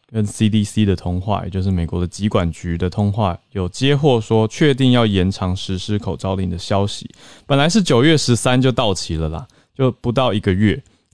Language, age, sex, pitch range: Chinese, 20-39, male, 95-120 Hz